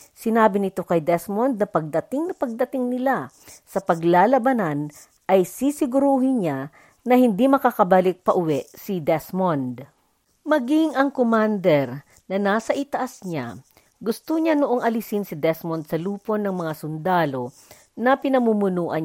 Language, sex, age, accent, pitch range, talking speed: Filipino, female, 40-59, native, 175-255 Hz, 125 wpm